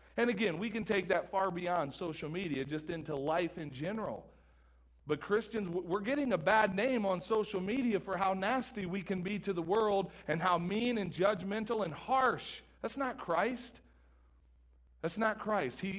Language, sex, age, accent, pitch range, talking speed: English, male, 40-59, American, 135-195 Hz, 180 wpm